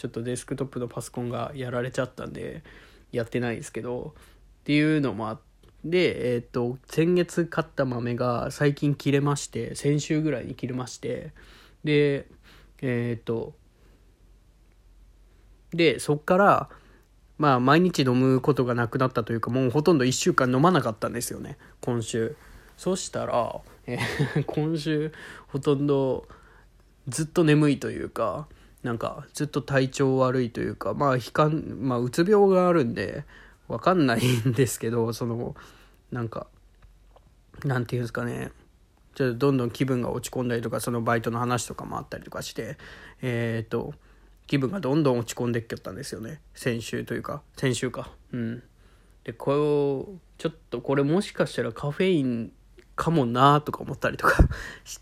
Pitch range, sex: 120-145 Hz, male